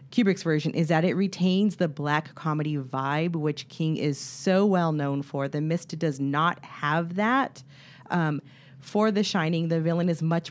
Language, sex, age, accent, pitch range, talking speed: English, female, 40-59, American, 145-185 Hz, 175 wpm